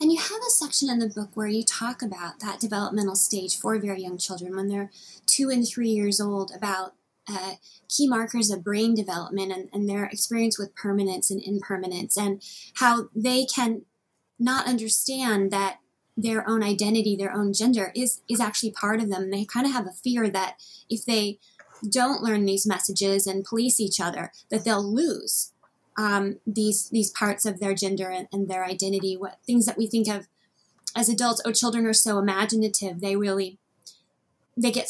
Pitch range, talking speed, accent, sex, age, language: 200-235 Hz, 185 wpm, American, female, 20-39, English